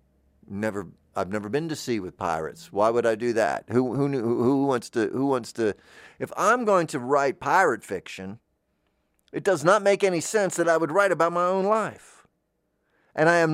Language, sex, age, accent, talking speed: English, male, 50-69, American, 205 wpm